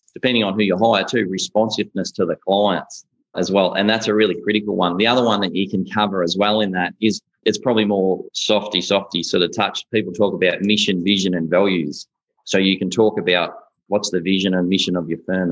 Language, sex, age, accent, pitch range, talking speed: English, male, 20-39, Australian, 90-100 Hz, 225 wpm